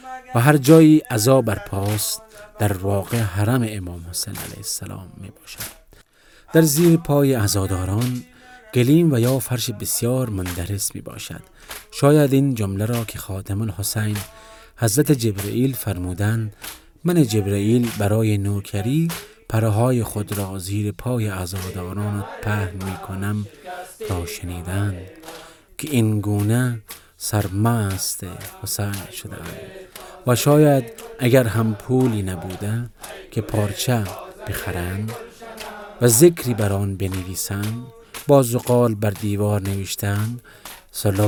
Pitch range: 100-125 Hz